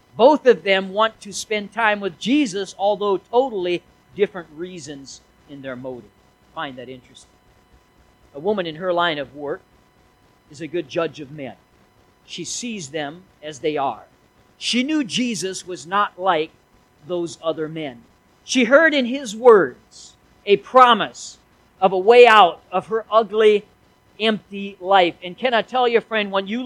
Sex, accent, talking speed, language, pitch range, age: male, American, 160 wpm, English, 165-220 Hz, 50-69